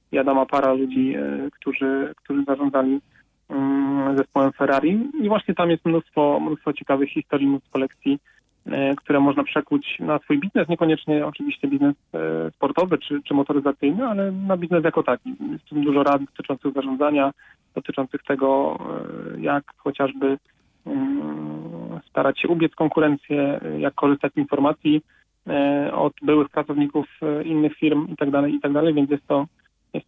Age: 30-49